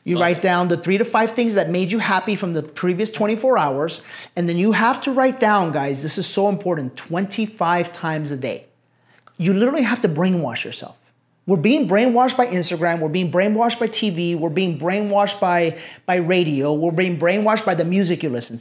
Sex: male